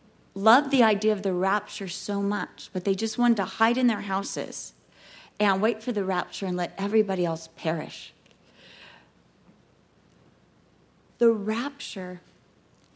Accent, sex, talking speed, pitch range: American, female, 135 wpm, 185-225 Hz